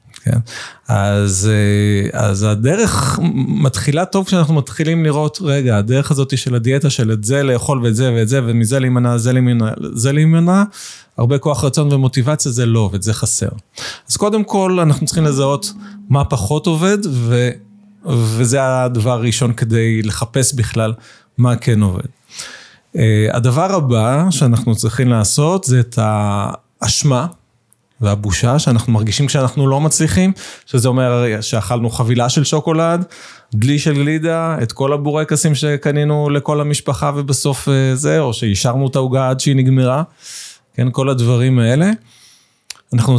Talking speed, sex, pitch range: 135 wpm, male, 115-145 Hz